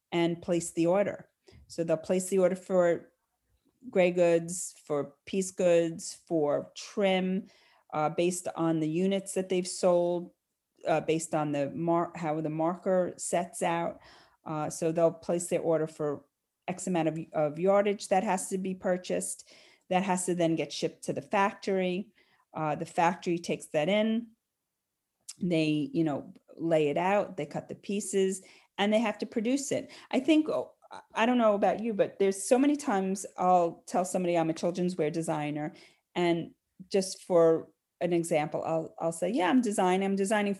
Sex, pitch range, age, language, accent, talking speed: female, 165-205 Hz, 40-59, English, American, 175 wpm